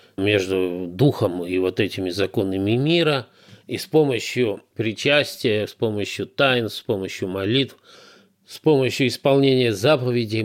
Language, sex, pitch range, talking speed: Russian, male, 100-130 Hz, 120 wpm